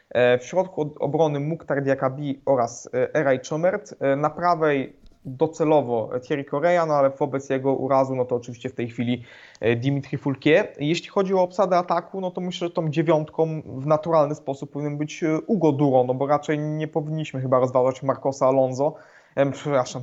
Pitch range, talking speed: 130-160 Hz, 160 wpm